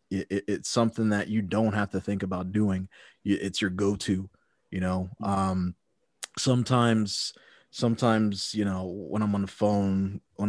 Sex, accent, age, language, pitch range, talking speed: male, American, 20-39, English, 95-110 Hz, 150 wpm